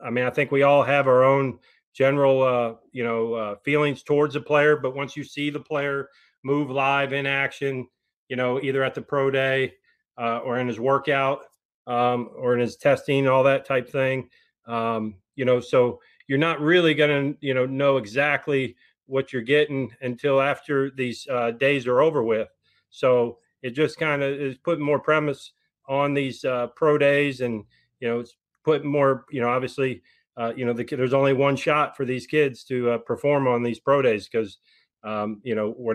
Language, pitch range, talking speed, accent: English, 120-140 Hz, 195 wpm, American